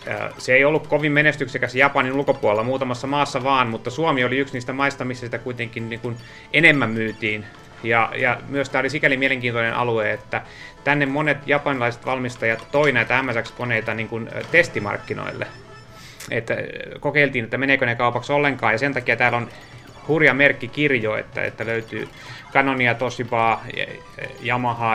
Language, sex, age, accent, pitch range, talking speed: Finnish, male, 30-49, native, 110-130 Hz, 150 wpm